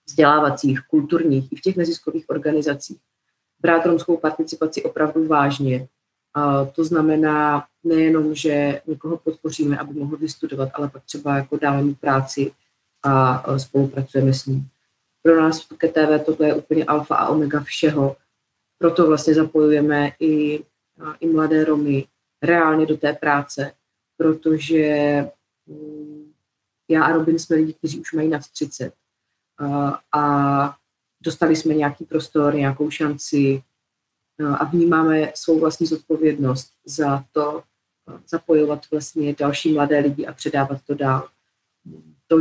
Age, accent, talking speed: 30-49, native, 125 wpm